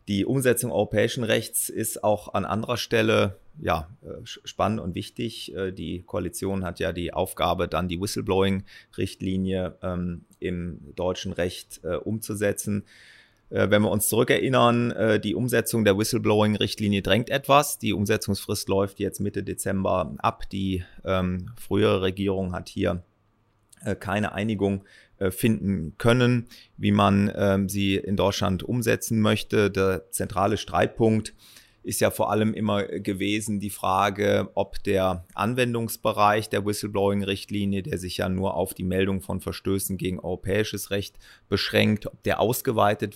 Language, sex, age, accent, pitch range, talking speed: German, male, 30-49, German, 95-105 Hz, 130 wpm